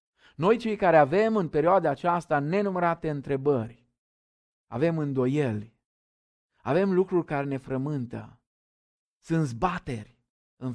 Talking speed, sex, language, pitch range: 105 wpm, male, Romanian, 120-150 Hz